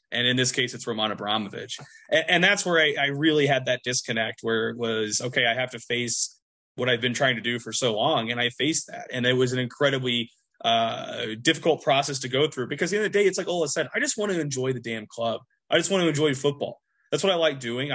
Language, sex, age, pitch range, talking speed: English, male, 20-39, 120-155 Hz, 270 wpm